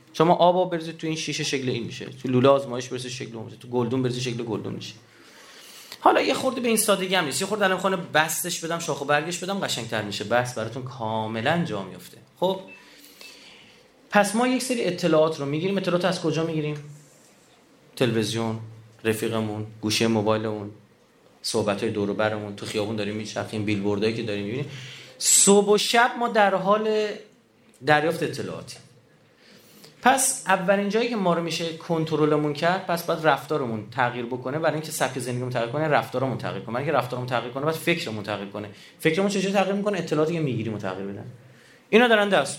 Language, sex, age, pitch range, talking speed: Persian, male, 30-49, 115-175 Hz, 180 wpm